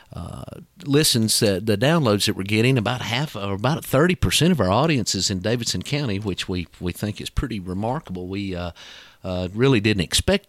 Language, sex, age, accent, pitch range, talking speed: English, male, 40-59, American, 90-115 Hz, 195 wpm